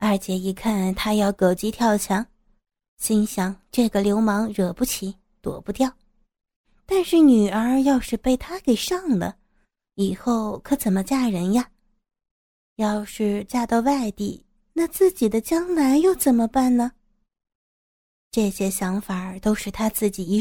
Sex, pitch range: female, 200-255 Hz